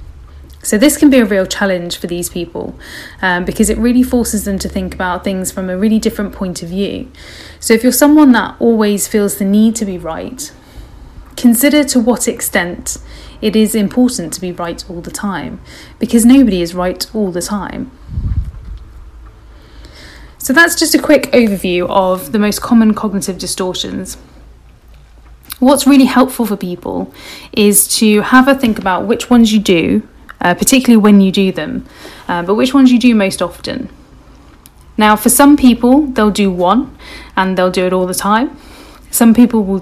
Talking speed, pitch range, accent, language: 175 wpm, 180-245 Hz, British, English